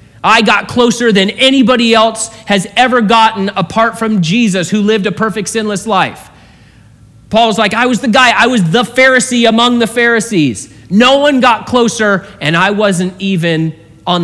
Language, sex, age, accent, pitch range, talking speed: English, male, 30-49, American, 150-205 Hz, 170 wpm